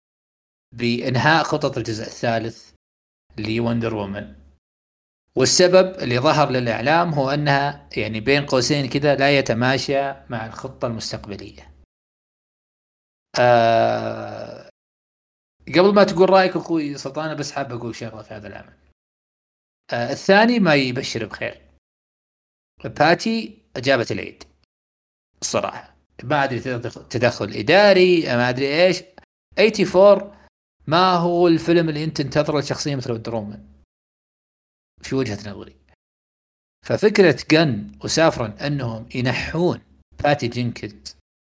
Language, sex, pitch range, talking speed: Arabic, male, 105-150 Hz, 105 wpm